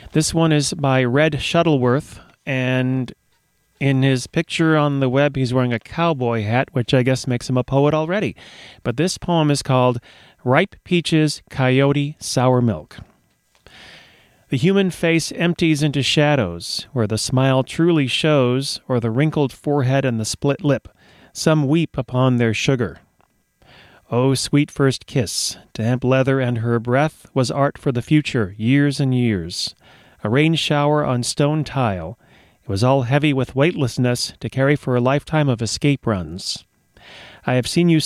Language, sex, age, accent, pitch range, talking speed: English, male, 40-59, American, 125-150 Hz, 160 wpm